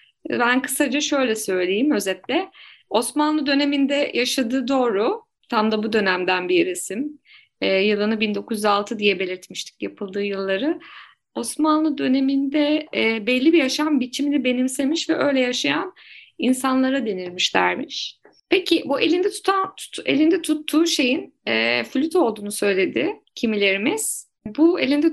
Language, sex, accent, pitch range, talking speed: Turkish, female, native, 220-310 Hz, 120 wpm